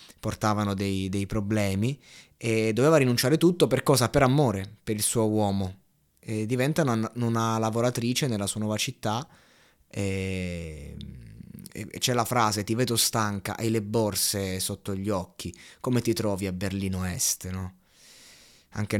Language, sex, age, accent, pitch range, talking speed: Italian, male, 20-39, native, 100-115 Hz, 150 wpm